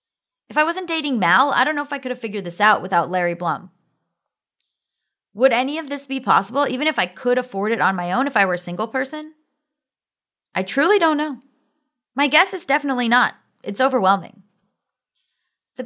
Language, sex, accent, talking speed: English, female, American, 195 wpm